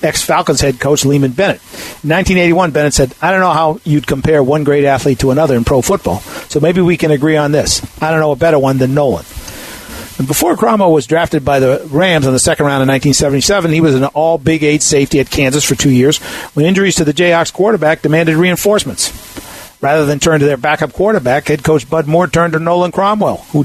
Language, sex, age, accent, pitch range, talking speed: English, male, 50-69, American, 145-170 Hz, 220 wpm